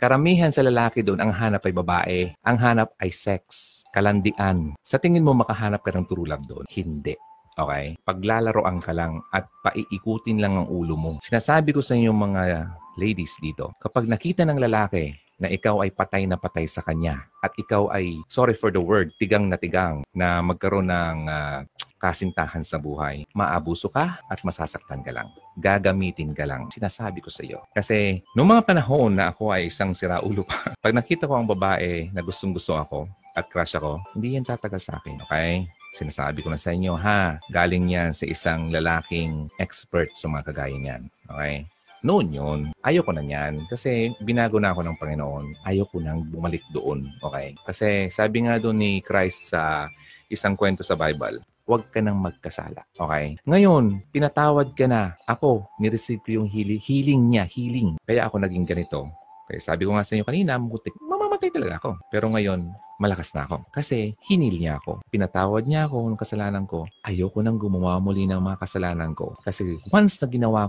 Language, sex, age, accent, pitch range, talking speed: Filipino, male, 30-49, native, 85-110 Hz, 180 wpm